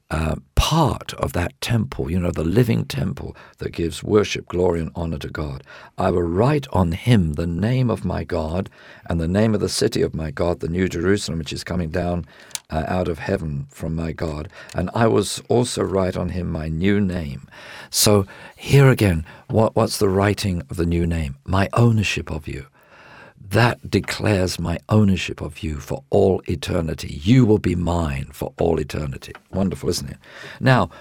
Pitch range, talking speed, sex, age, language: 80-105 Hz, 185 wpm, male, 50-69, English